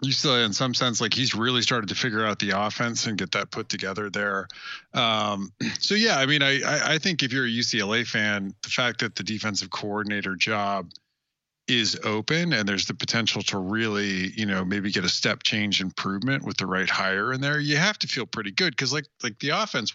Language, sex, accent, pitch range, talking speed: English, male, American, 100-135 Hz, 220 wpm